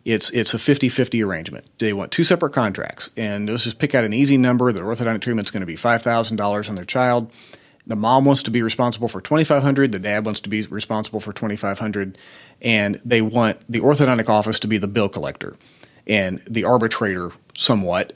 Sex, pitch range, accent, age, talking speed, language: male, 110-135 Hz, American, 30-49, 200 wpm, English